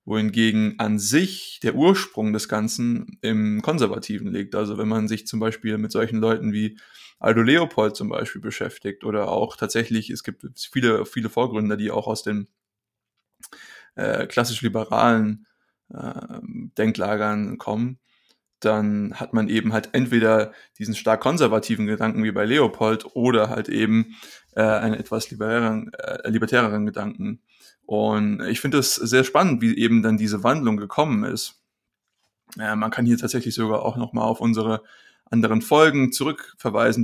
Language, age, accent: German, 20-39, German